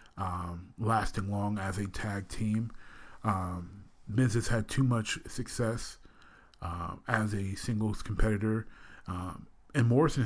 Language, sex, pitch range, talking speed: English, male, 100-110 Hz, 130 wpm